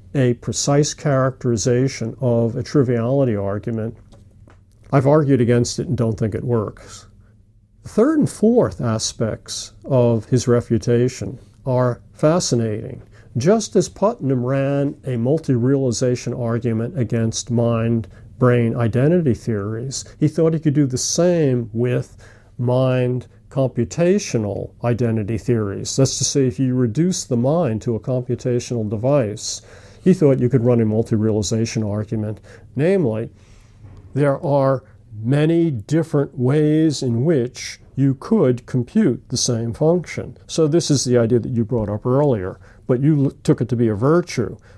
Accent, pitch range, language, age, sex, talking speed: American, 110-140 Hz, English, 50-69, male, 135 wpm